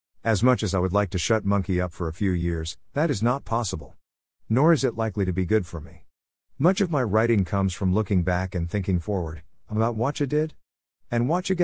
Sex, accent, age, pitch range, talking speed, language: male, American, 50-69, 85-115 Hz, 230 wpm, English